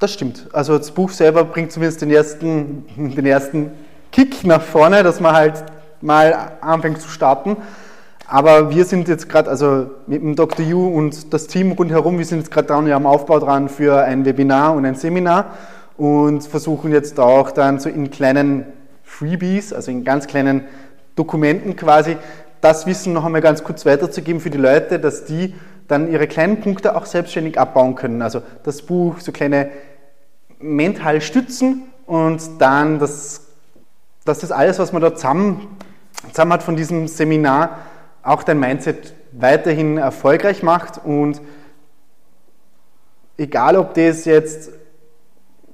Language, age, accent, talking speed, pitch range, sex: German, 20-39, German, 155 wpm, 145-170 Hz, male